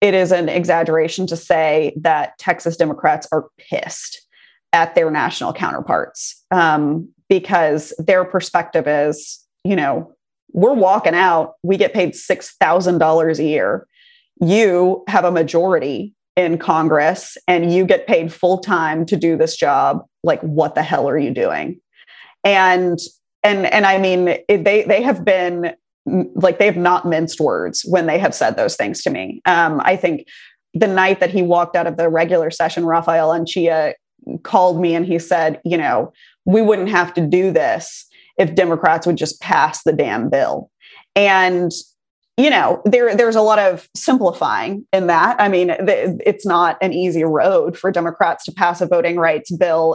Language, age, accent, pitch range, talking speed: English, 30-49, American, 165-200 Hz, 170 wpm